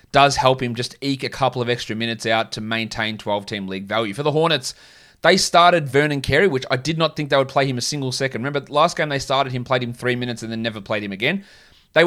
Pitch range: 115-150 Hz